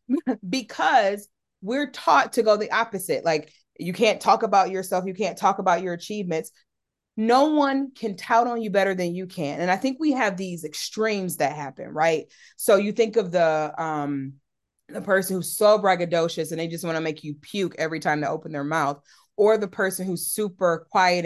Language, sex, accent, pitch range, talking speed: English, female, American, 155-205 Hz, 200 wpm